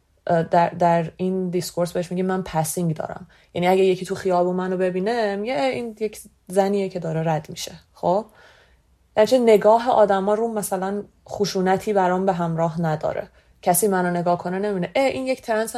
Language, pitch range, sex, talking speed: Persian, 165-205 Hz, female, 165 wpm